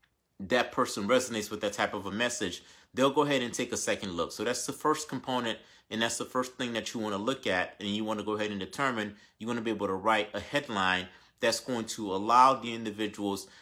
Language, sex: English, male